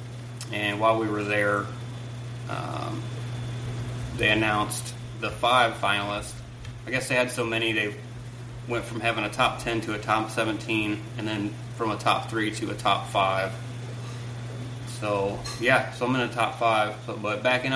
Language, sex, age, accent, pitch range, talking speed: English, male, 20-39, American, 110-120 Hz, 160 wpm